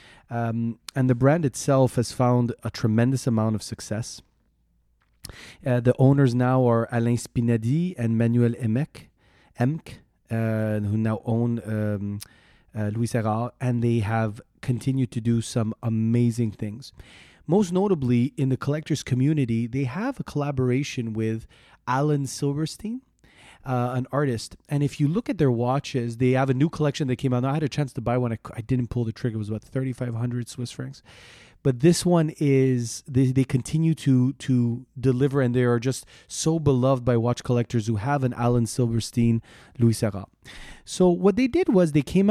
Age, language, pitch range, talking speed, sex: 30-49, English, 115-140 Hz, 175 wpm, male